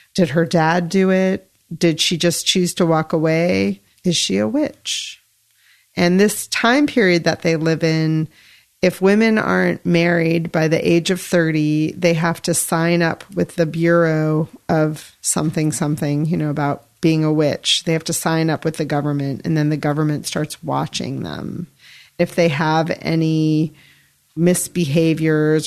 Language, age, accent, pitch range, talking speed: English, 40-59, American, 150-170 Hz, 165 wpm